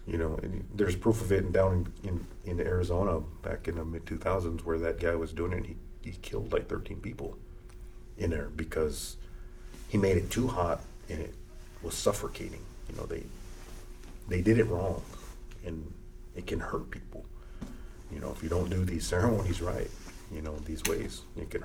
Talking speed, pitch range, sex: 195 wpm, 85-105 Hz, male